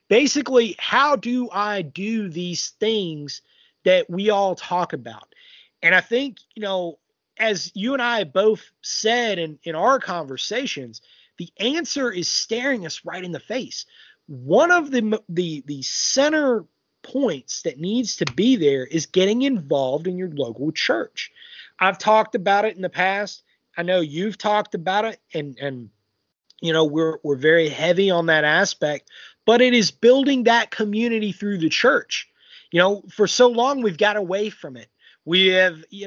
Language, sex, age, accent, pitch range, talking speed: English, male, 30-49, American, 170-230 Hz, 170 wpm